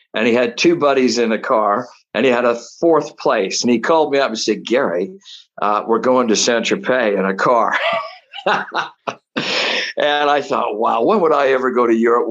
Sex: male